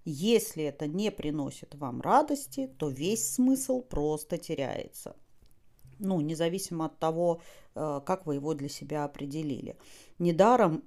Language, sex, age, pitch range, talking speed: Russian, female, 40-59, 155-200 Hz, 120 wpm